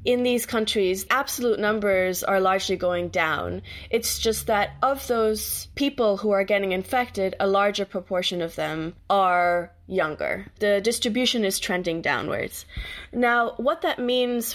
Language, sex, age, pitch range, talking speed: English, female, 20-39, 185-235 Hz, 145 wpm